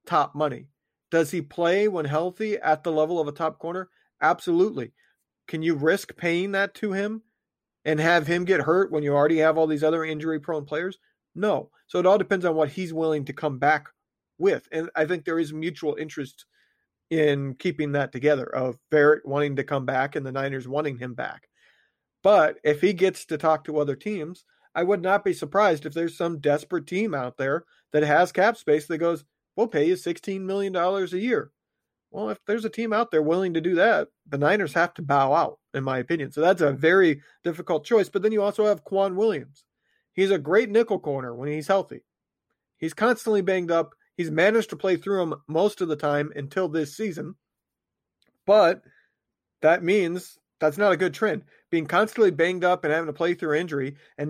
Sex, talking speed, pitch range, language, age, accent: male, 205 wpm, 150-190 Hz, English, 40-59, American